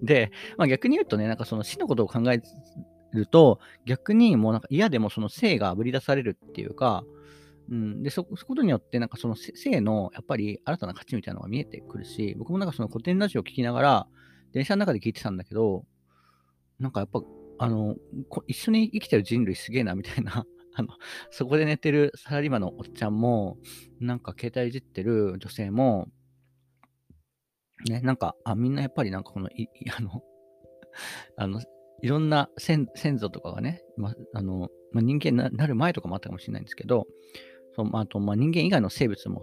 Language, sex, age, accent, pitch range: Japanese, male, 40-59, native, 105-140 Hz